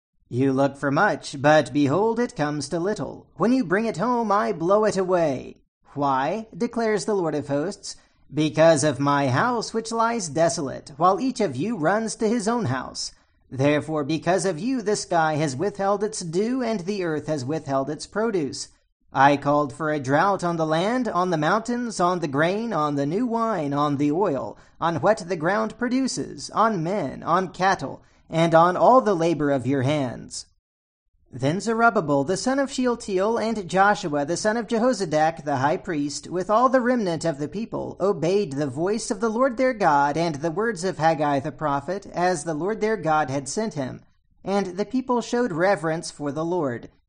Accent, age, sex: American, 40-59, male